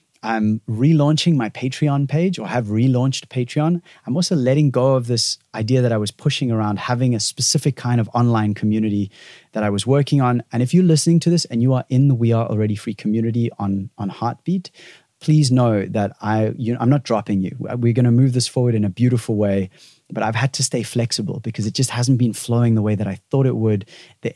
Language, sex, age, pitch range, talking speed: English, male, 30-49, 110-140 Hz, 225 wpm